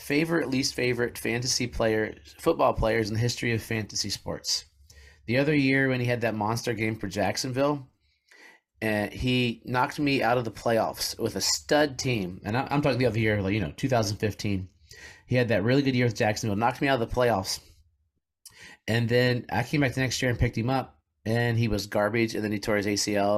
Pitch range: 110-140 Hz